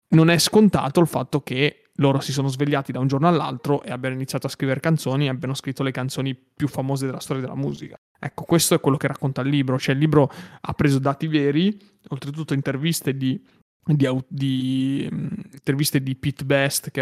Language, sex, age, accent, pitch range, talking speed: Italian, male, 20-39, native, 135-155 Hz, 195 wpm